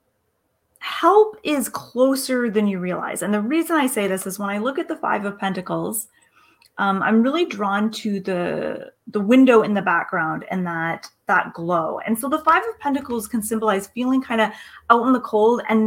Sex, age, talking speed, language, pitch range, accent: female, 30-49, 195 wpm, English, 195-245 Hz, American